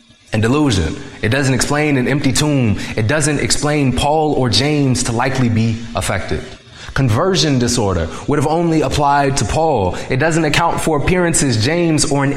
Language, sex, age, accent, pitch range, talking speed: English, male, 20-39, American, 95-150 Hz, 165 wpm